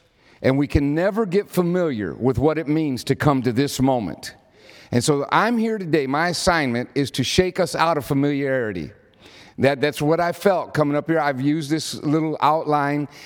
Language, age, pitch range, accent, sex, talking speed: English, 50-69, 135-165 Hz, American, male, 190 wpm